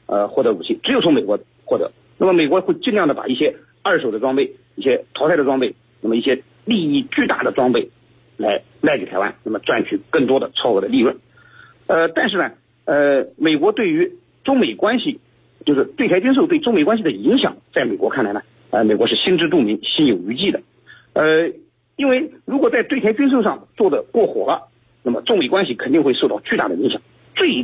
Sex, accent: male, native